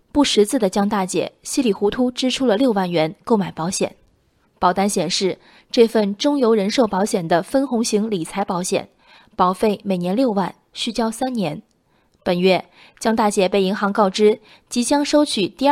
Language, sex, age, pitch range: Chinese, female, 20-39, 190-245 Hz